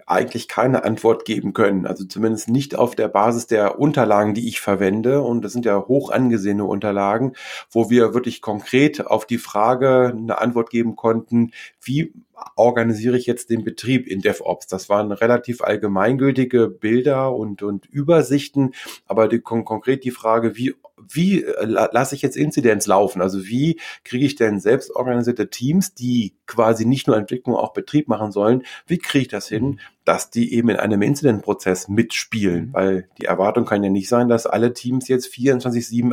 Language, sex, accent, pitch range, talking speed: German, male, German, 105-130 Hz, 175 wpm